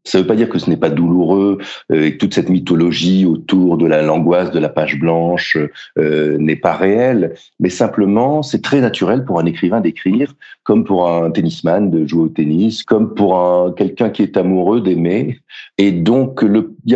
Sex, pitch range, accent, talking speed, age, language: male, 85-120 Hz, French, 200 wpm, 50-69, French